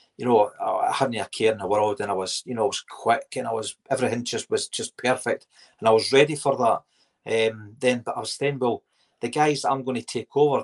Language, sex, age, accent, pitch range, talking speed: English, male, 40-59, British, 110-135 Hz, 255 wpm